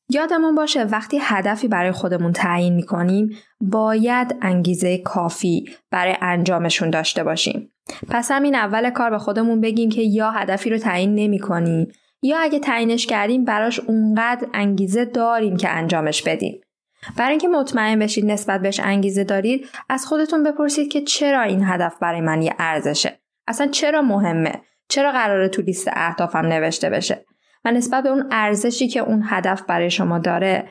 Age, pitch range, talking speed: 10-29, 190-245 Hz, 150 wpm